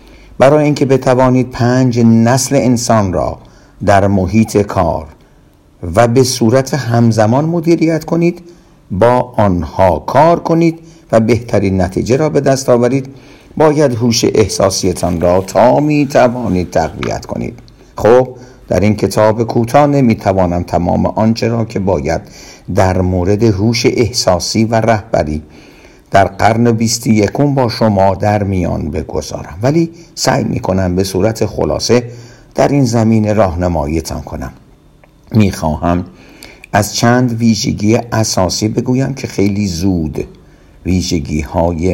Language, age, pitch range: Persian, 50-69, 95-130 Hz